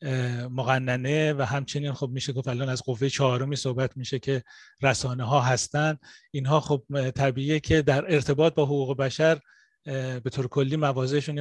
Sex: male